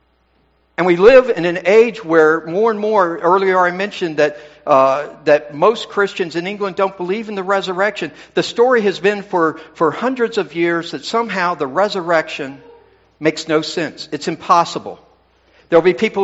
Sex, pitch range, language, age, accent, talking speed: male, 155-200 Hz, English, 60-79, American, 170 wpm